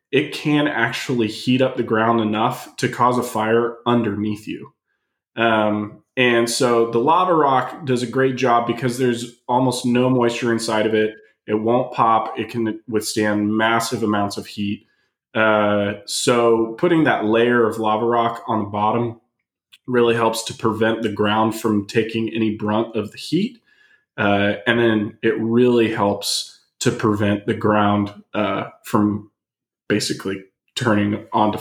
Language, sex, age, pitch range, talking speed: English, male, 20-39, 105-120 Hz, 155 wpm